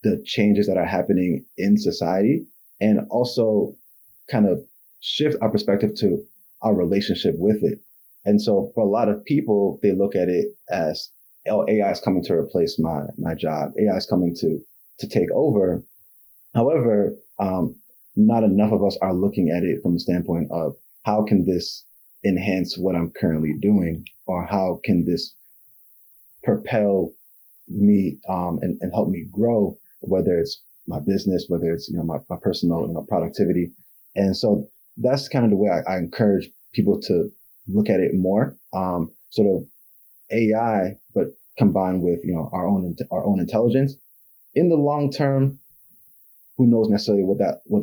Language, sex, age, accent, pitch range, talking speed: English, male, 30-49, American, 95-125 Hz, 170 wpm